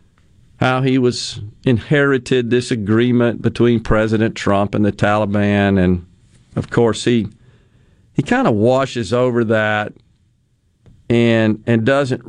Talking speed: 120 wpm